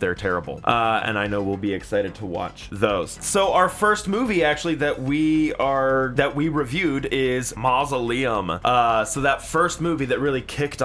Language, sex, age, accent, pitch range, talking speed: English, male, 20-39, American, 110-150 Hz, 185 wpm